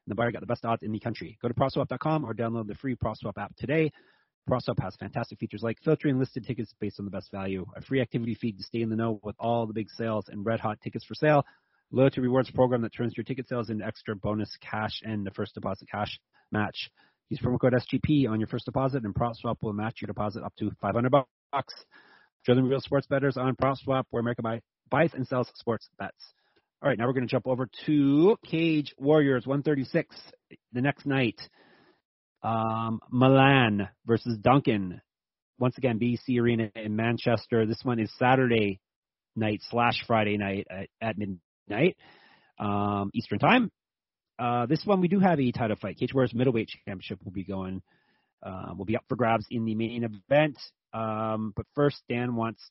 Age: 30-49